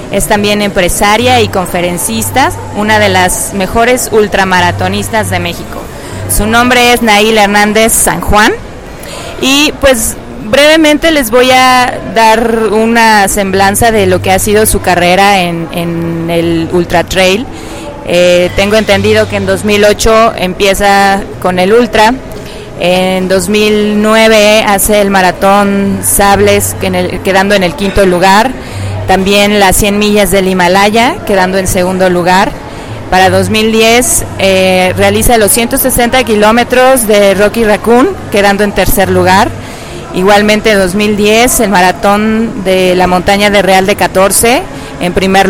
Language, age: Spanish, 20-39